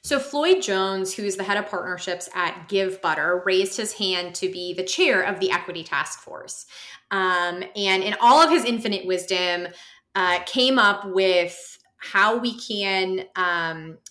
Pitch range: 180-215 Hz